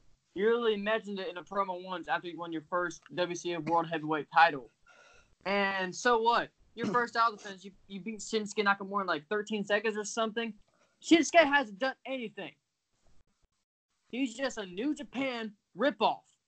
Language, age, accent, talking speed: English, 10-29, American, 165 wpm